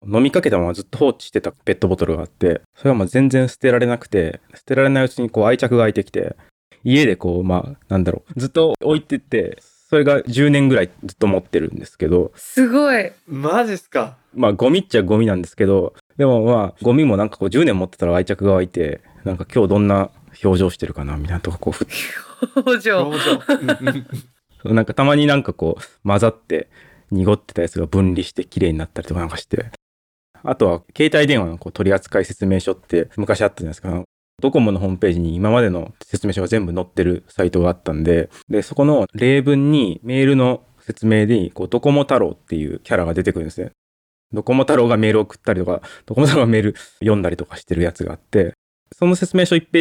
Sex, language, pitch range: male, Japanese, 90-135 Hz